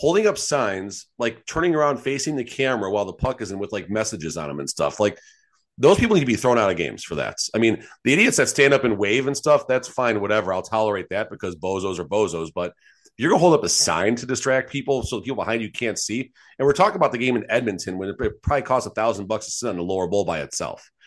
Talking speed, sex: 265 wpm, male